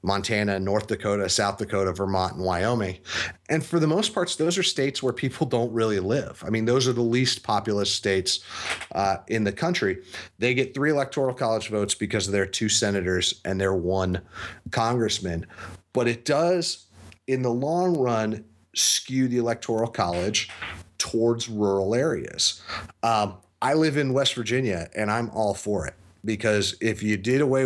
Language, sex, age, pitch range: English, male, 30-49, 100-130 Hz